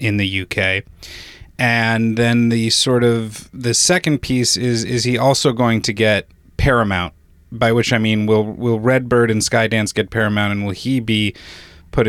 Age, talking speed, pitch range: 30-49, 175 wpm, 105-125 Hz